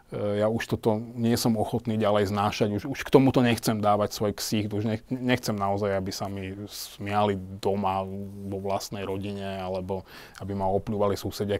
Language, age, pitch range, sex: Slovak, 30-49, 100-115 Hz, male